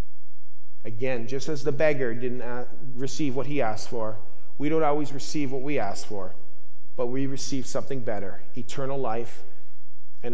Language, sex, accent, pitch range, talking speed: English, male, American, 120-170 Hz, 155 wpm